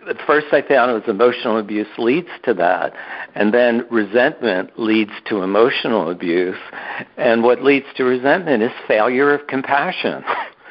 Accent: American